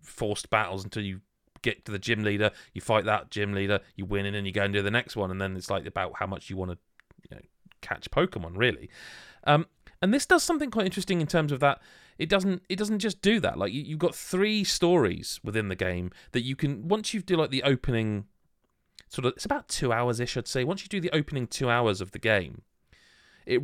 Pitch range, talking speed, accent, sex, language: 105-170 Hz, 245 wpm, British, male, English